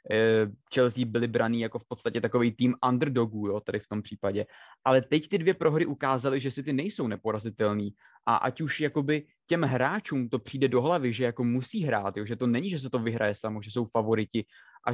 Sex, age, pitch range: male, 20-39, 115-135 Hz